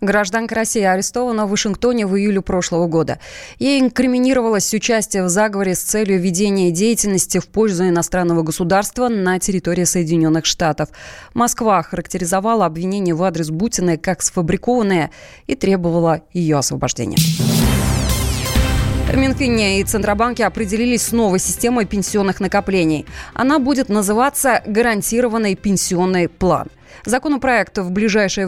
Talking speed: 120 wpm